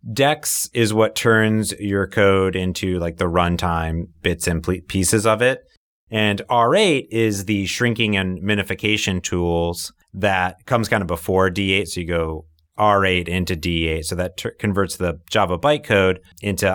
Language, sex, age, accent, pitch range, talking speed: English, male, 30-49, American, 85-110 Hz, 155 wpm